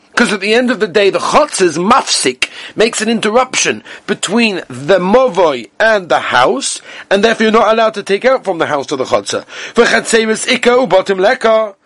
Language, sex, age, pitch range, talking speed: English, male, 40-59, 155-240 Hz, 165 wpm